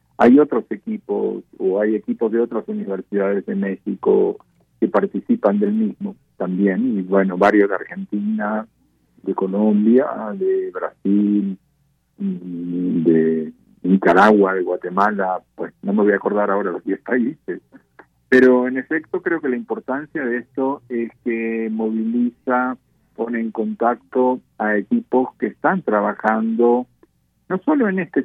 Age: 40-59